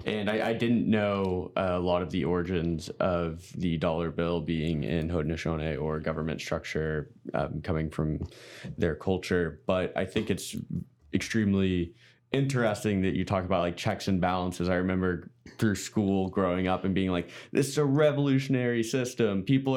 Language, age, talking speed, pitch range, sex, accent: English, 20-39, 165 wpm, 90-120 Hz, male, American